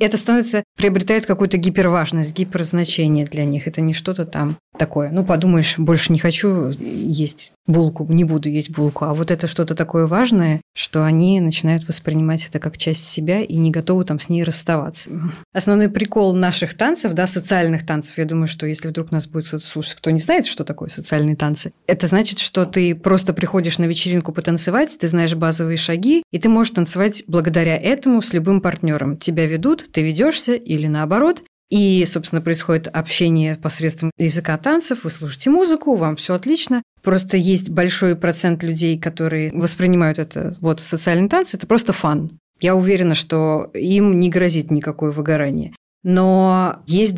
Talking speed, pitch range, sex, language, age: 170 wpm, 160-190 Hz, female, Russian, 20-39